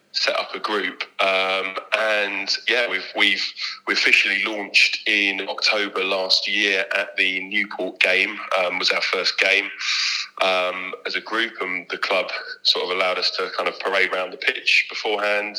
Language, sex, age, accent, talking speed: English, male, 30-49, British, 170 wpm